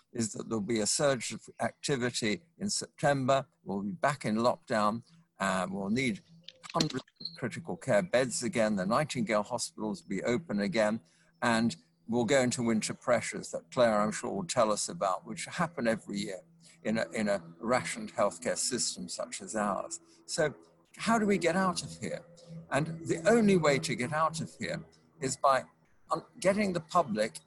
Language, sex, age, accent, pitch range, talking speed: English, male, 60-79, British, 115-175 Hz, 175 wpm